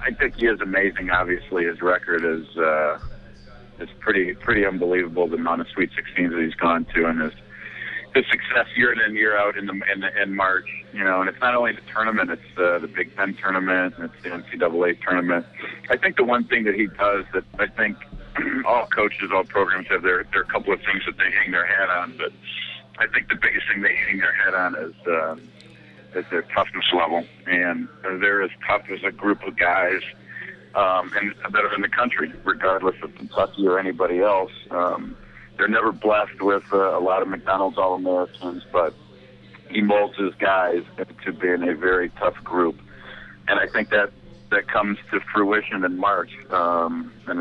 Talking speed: 200 wpm